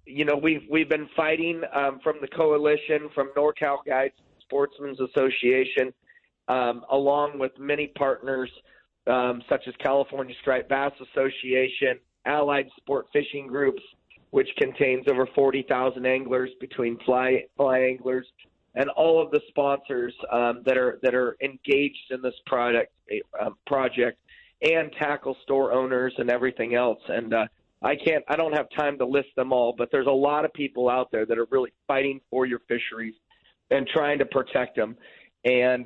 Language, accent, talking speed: English, American, 160 wpm